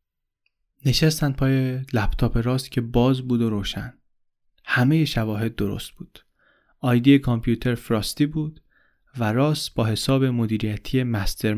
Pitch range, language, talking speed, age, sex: 110-135 Hz, Persian, 120 wpm, 30-49, male